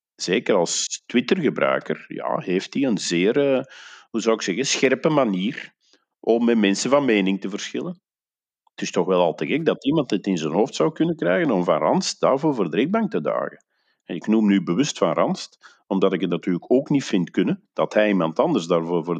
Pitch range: 95-120 Hz